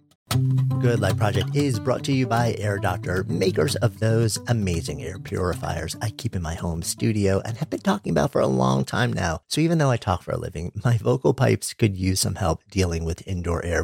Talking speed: 220 wpm